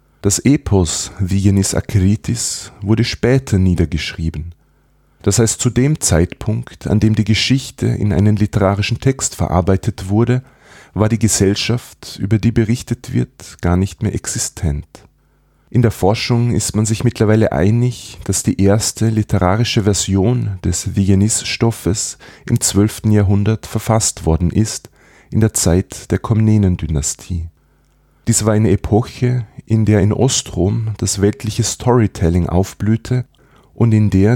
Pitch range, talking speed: 95-115 Hz, 130 wpm